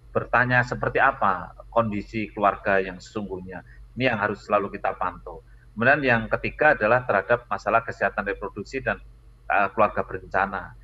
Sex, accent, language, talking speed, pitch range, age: male, native, Indonesian, 135 wpm, 100-120 Hz, 30-49